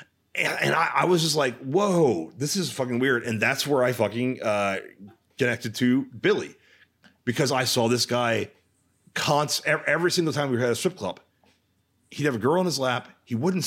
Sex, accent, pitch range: male, American, 120-185 Hz